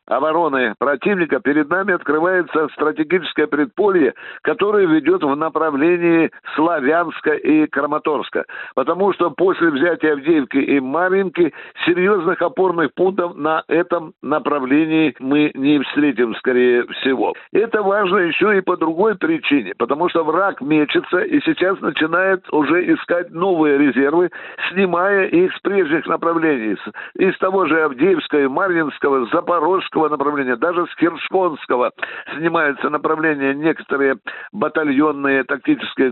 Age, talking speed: 60-79, 120 wpm